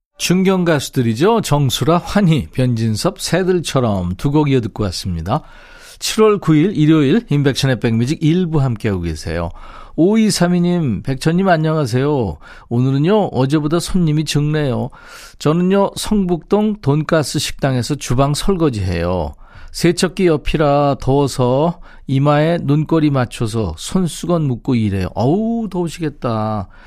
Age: 40-59